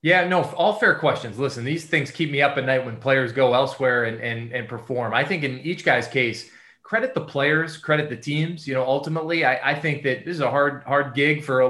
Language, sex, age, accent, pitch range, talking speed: English, male, 20-39, American, 125-150 Hz, 245 wpm